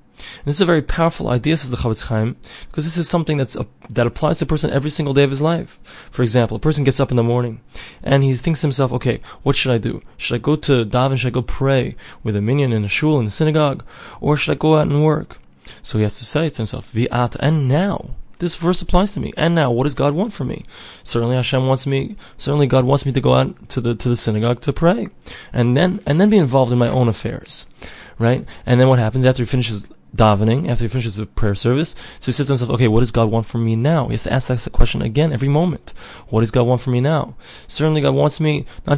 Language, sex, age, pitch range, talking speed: English, male, 20-39, 120-150 Hz, 265 wpm